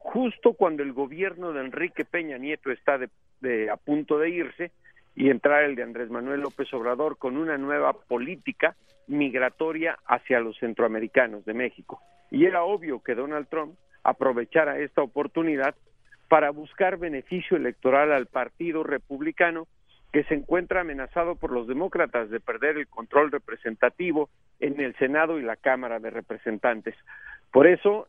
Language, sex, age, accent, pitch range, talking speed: Spanish, male, 50-69, Mexican, 130-170 Hz, 145 wpm